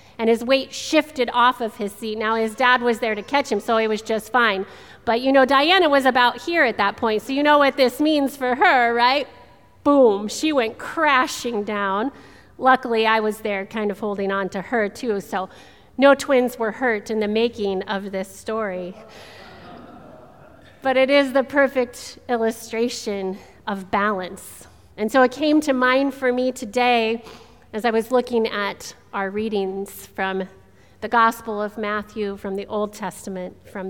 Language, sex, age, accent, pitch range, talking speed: English, female, 40-59, American, 205-255 Hz, 180 wpm